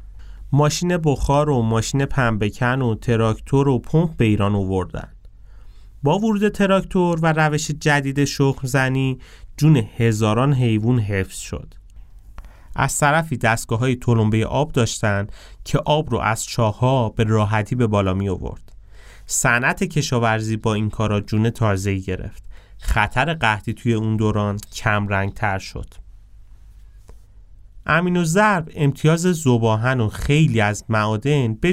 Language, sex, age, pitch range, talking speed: Persian, male, 30-49, 100-140 Hz, 125 wpm